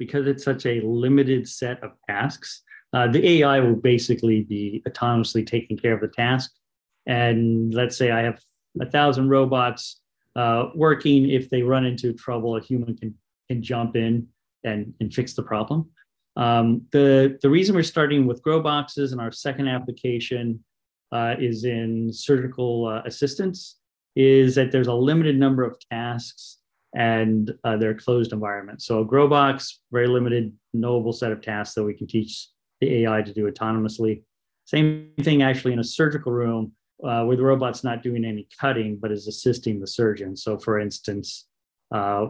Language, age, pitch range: English, 40-59, 110-130 Hz